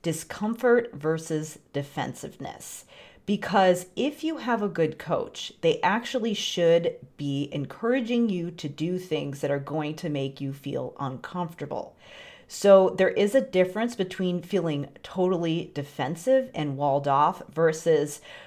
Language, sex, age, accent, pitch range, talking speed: English, female, 40-59, American, 150-195 Hz, 130 wpm